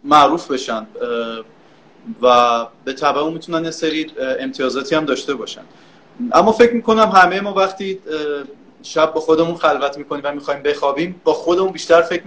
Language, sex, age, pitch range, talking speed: Persian, male, 30-49, 130-180 Hz, 145 wpm